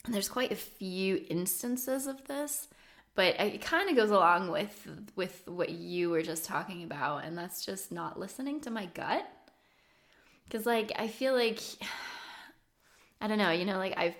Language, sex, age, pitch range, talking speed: English, female, 20-39, 175-215 Hz, 180 wpm